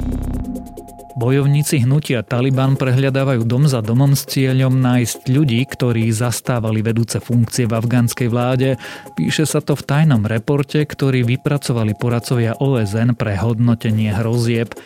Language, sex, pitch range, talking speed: Slovak, male, 110-140 Hz, 125 wpm